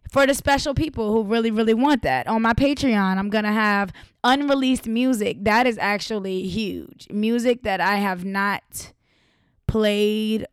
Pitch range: 205-250 Hz